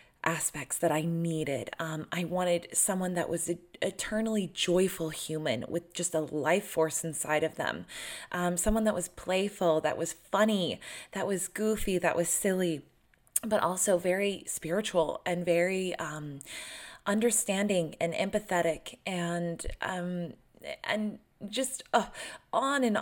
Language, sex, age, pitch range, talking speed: English, female, 20-39, 155-190 Hz, 135 wpm